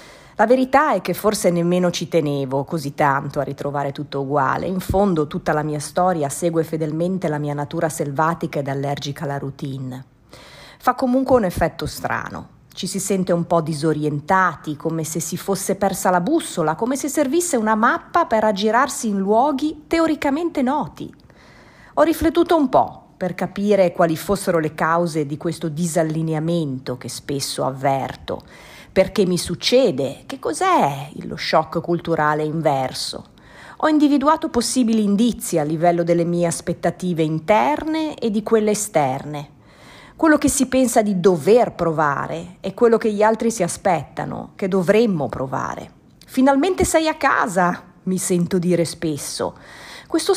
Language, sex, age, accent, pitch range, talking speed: Italian, female, 40-59, native, 160-230 Hz, 150 wpm